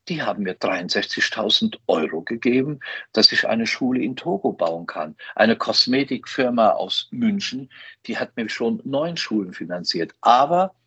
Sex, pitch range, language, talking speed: male, 120-160 Hz, German, 145 wpm